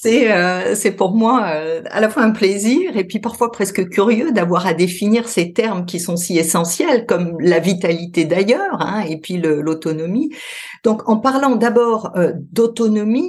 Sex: female